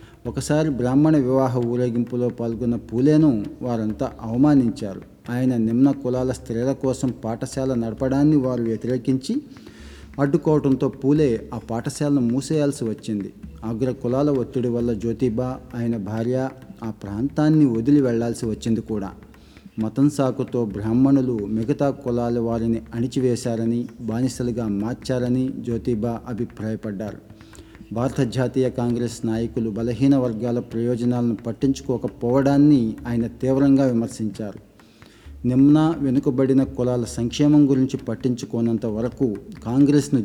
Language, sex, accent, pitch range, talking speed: Telugu, male, native, 115-135 Hz, 100 wpm